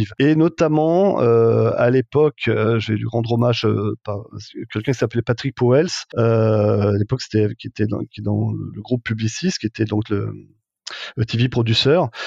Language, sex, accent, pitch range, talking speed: French, male, French, 110-130 Hz, 170 wpm